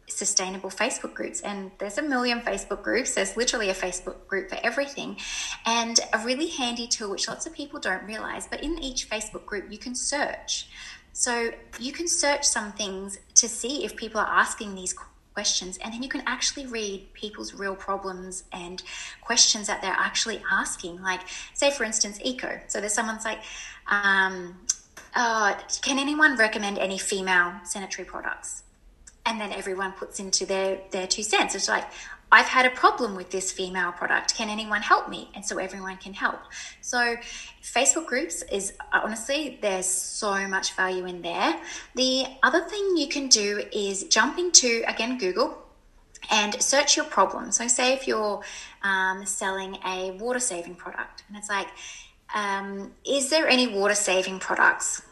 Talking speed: 170 wpm